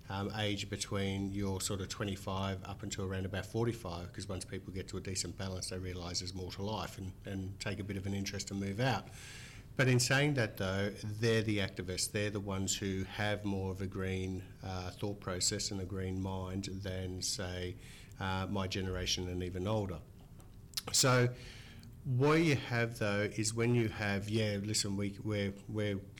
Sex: male